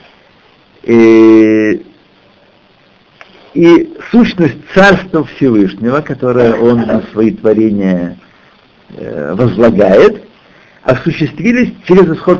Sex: male